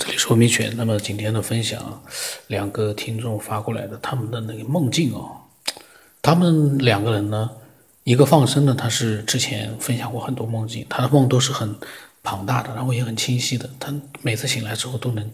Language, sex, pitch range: Chinese, male, 115-140 Hz